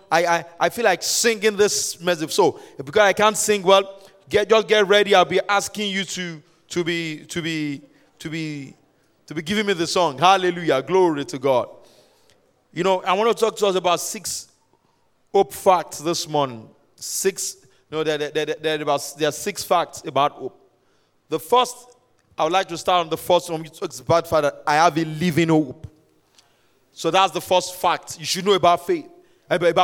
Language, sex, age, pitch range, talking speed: English, male, 30-49, 165-215 Hz, 190 wpm